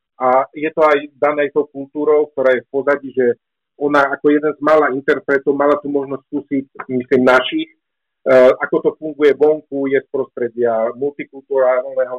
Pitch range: 135-165 Hz